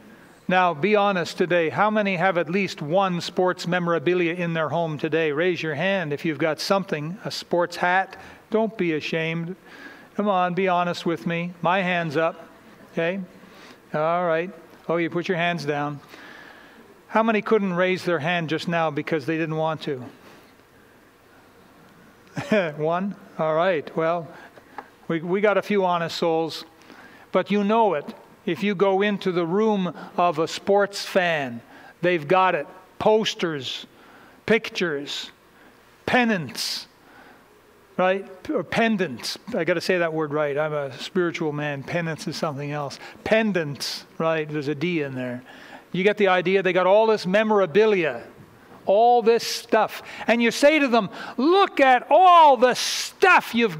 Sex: male